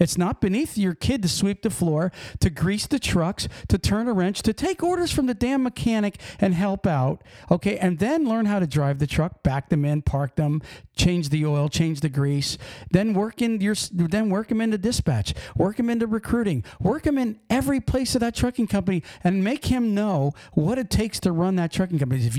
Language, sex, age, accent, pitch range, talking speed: English, male, 50-69, American, 165-230 Hz, 220 wpm